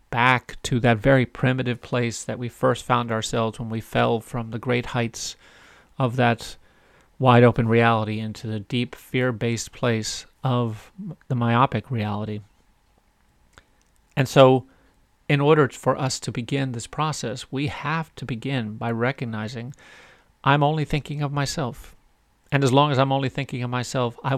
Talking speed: 155 wpm